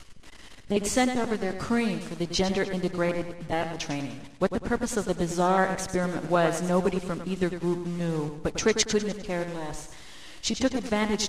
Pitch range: 165-210 Hz